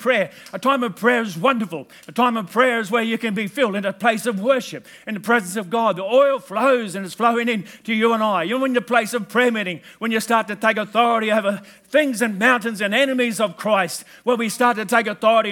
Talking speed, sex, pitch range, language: 250 wpm, male, 180-235 Hz, English